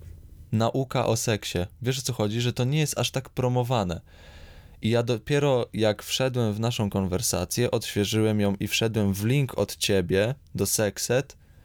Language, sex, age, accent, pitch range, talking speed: Polish, male, 20-39, native, 95-120 Hz, 165 wpm